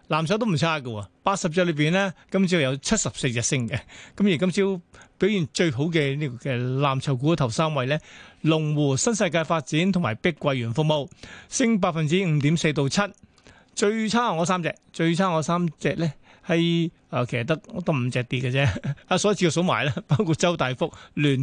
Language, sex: Chinese, male